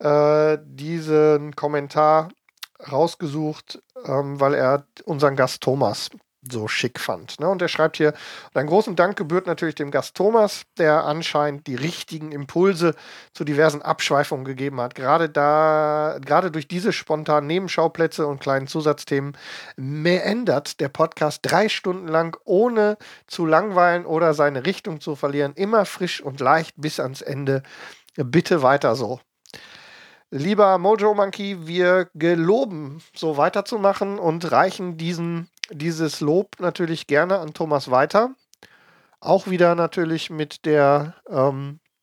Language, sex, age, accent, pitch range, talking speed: German, male, 40-59, German, 145-180 Hz, 130 wpm